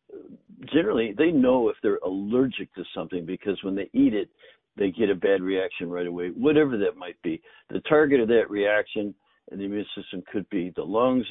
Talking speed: 195 wpm